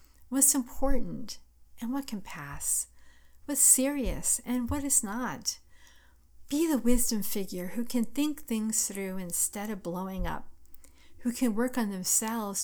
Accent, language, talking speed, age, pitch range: American, English, 140 wpm, 50-69, 185-240 Hz